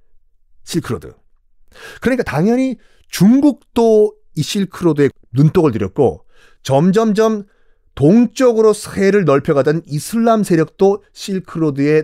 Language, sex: Korean, male